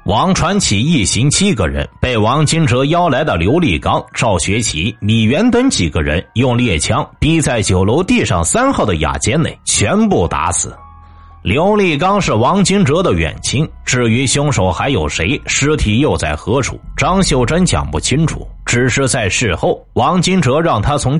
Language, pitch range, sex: Chinese, 95-145 Hz, male